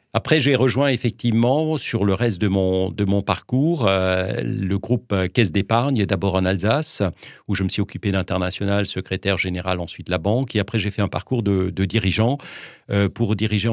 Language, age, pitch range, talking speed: French, 50-69, 95-115 Hz, 190 wpm